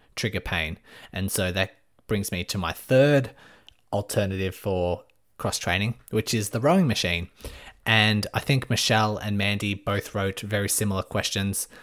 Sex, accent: male, Australian